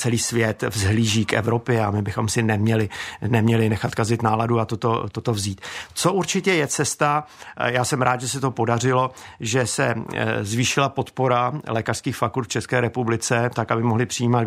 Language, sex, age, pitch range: Czech, male, 50-69, 115-130 Hz